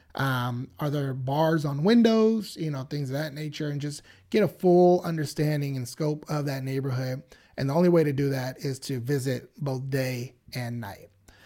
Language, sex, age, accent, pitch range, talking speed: English, male, 30-49, American, 135-160 Hz, 195 wpm